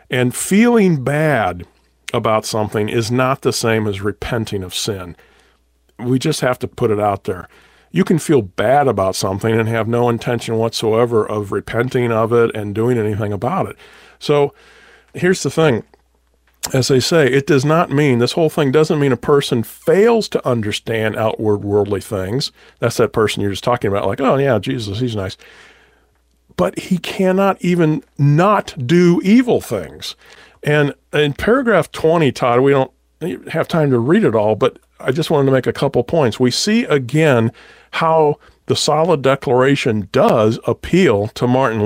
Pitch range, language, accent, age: 110-150 Hz, English, American, 40-59